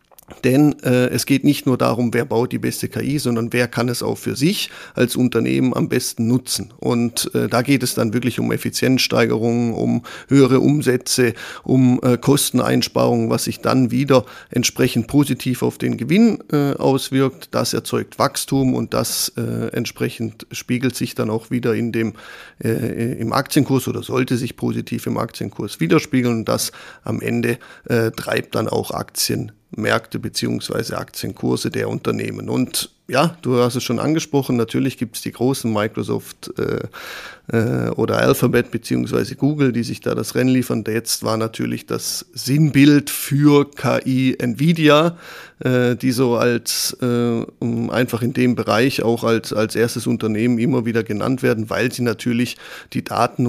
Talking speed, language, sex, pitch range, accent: 165 wpm, German, male, 115-130 Hz, German